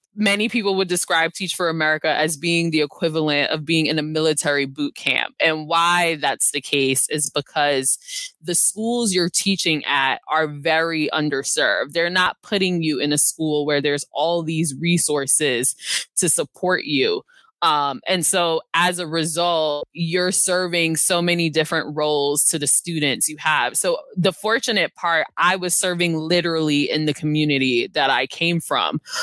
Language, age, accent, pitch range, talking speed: English, 20-39, American, 150-175 Hz, 165 wpm